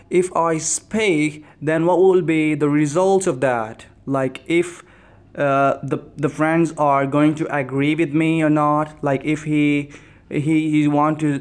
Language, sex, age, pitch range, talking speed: English, male, 20-39, 130-155 Hz, 170 wpm